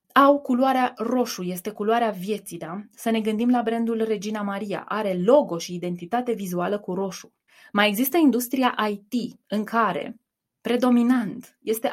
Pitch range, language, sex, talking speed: 180-240 Hz, Romanian, female, 145 wpm